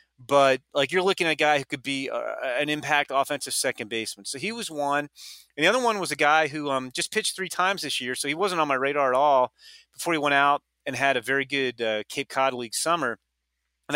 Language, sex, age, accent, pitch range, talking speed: English, male, 30-49, American, 130-155 Hz, 250 wpm